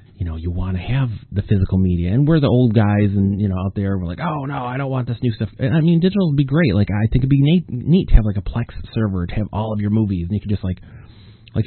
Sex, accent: male, American